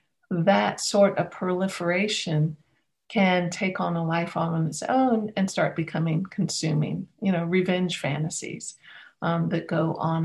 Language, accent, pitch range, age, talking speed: English, American, 170-205 Hz, 50-69, 140 wpm